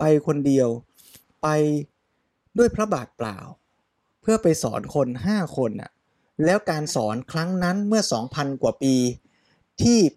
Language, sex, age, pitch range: Thai, male, 20-39, 130-175 Hz